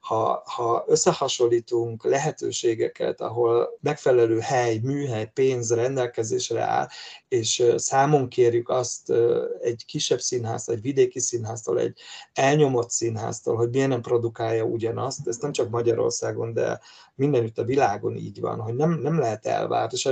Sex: male